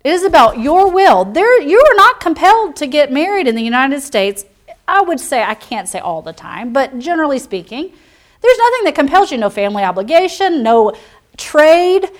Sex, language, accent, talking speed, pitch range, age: female, English, American, 185 wpm, 235-345 Hz, 40-59